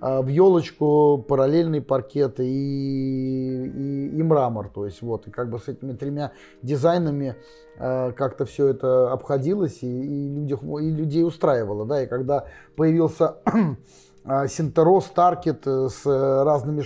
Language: Russian